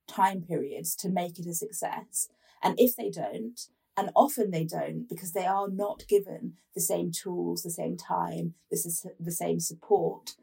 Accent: British